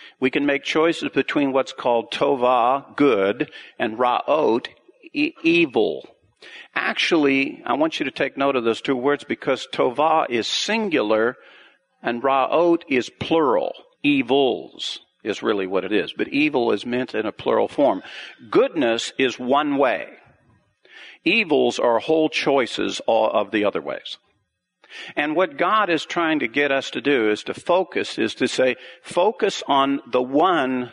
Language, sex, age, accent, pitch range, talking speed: English, male, 50-69, American, 125-170 Hz, 150 wpm